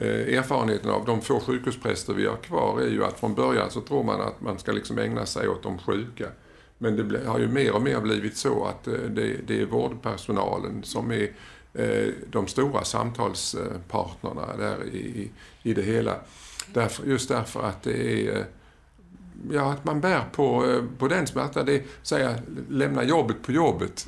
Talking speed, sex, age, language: 160 wpm, male, 50-69, Swedish